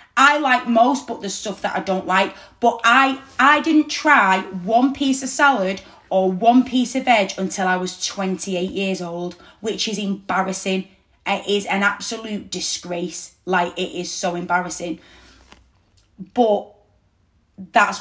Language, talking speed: English, 150 wpm